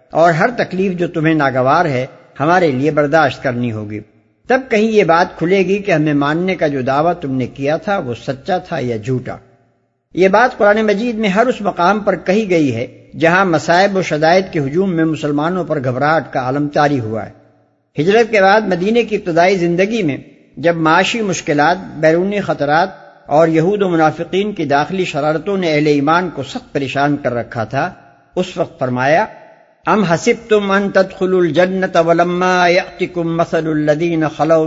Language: Urdu